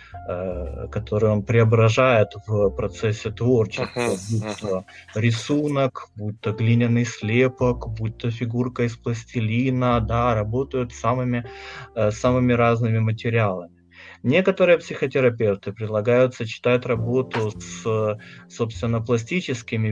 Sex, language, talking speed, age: male, Russian, 90 wpm, 30-49